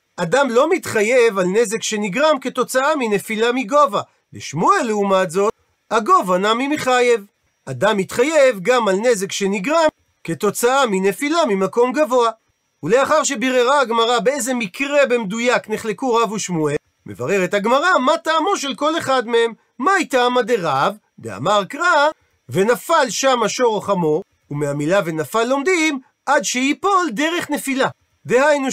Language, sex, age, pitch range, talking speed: Hebrew, male, 40-59, 205-275 Hz, 125 wpm